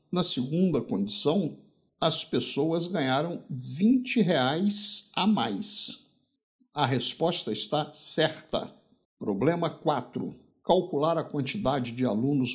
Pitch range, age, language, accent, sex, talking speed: 130-215 Hz, 60-79, Portuguese, Brazilian, male, 100 wpm